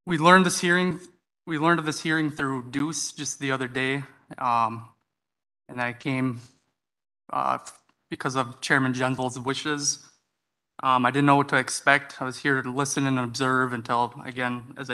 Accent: American